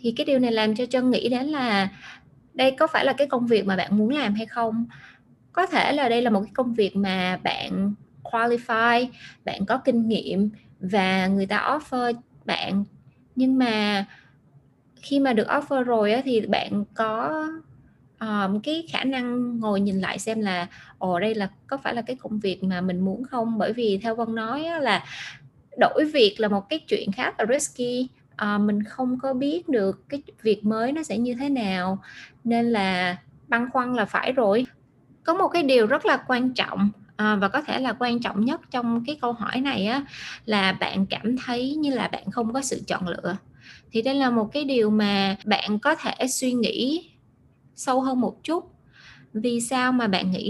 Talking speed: 200 wpm